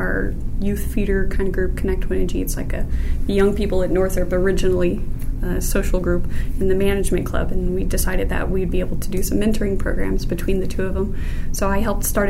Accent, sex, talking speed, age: American, female, 215 wpm, 30-49